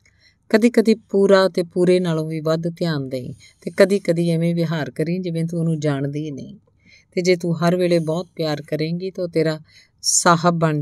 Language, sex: Punjabi, female